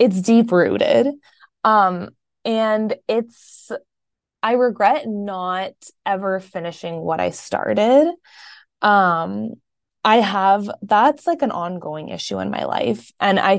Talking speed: 120 wpm